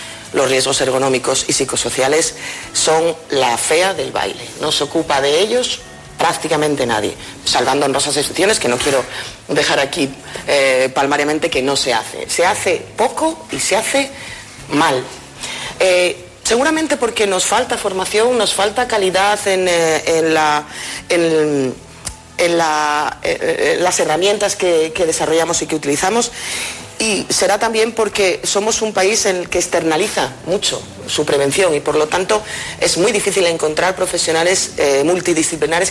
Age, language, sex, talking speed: 40-59, Spanish, female, 150 wpm